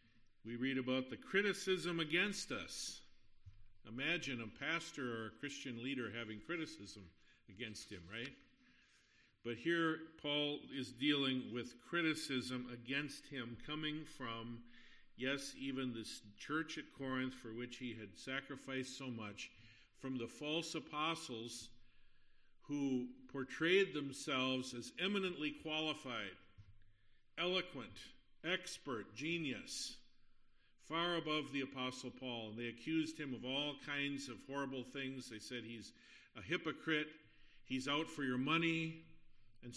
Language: English